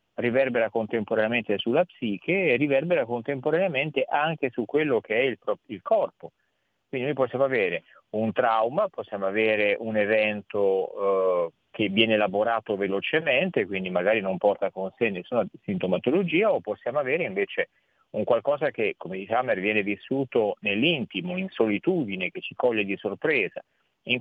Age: 40-59